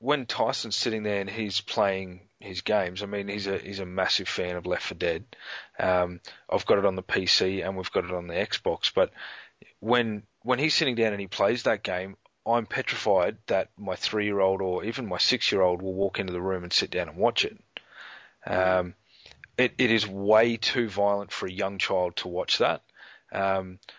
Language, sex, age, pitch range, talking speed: English, male, 30-49, 95-110 Hz, 205 wpm